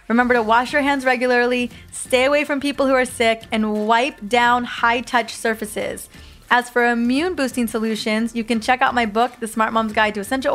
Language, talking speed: English, 195 wpm